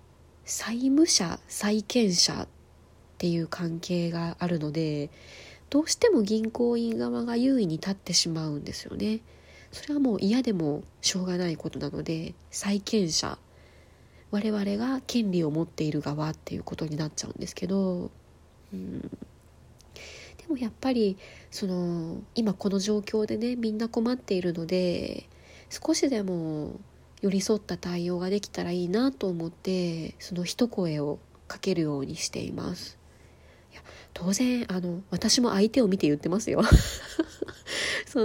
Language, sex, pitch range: Japanese, female, 170-225 Hz